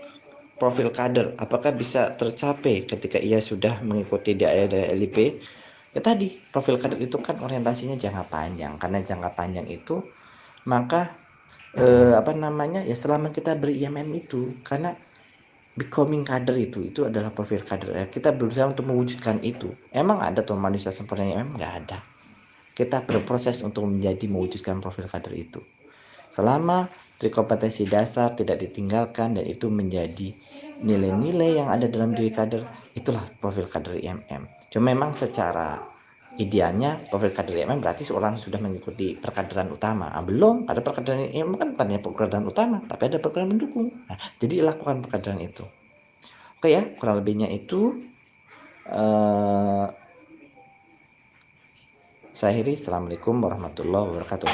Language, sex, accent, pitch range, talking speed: Indonesian, male, native, 100-145 Hz, 135 wpm